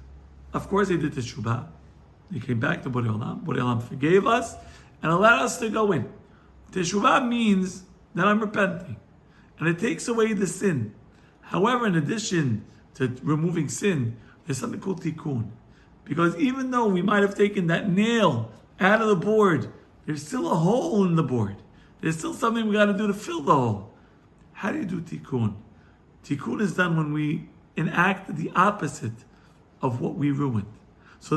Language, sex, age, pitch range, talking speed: English, male, 50-69, 135-210 Hz, 170 wpm